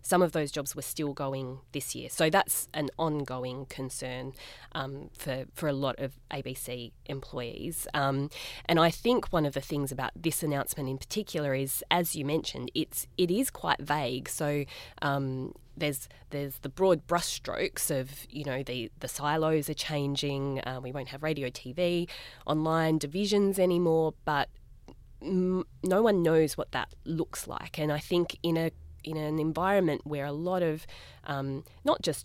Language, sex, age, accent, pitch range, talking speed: English, female, 20-39, Australian, 135-175 Hz, 175 wpm